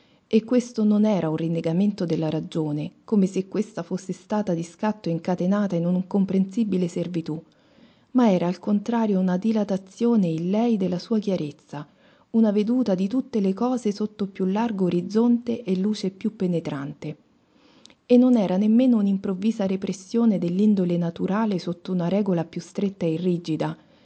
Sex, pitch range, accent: female, 175-220 Hz, native